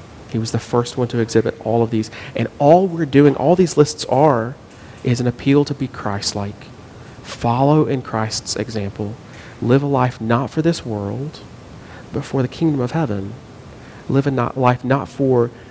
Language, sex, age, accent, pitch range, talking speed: English, male, 40-59, American, 115-140 Hz, 175 wpm